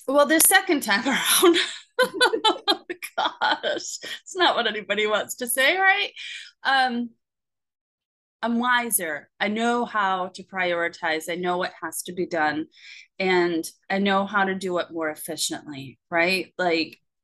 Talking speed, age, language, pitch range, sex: 140 wpm, 30-49, English, 180-260 Hz, female